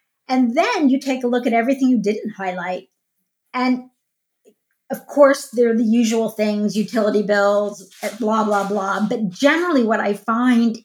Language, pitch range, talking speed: English, 215-255 Hz, 160 wpm